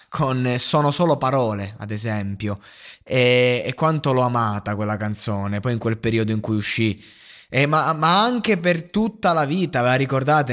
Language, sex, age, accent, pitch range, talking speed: Italian, male, 20-39, native, 110-150 Hz, 175 wpm